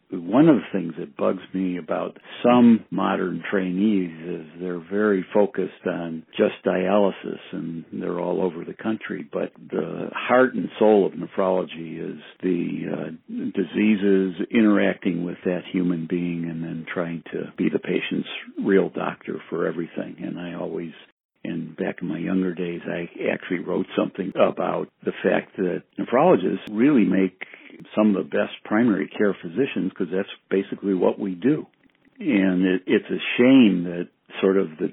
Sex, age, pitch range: male, 60-79, 85-100 Hz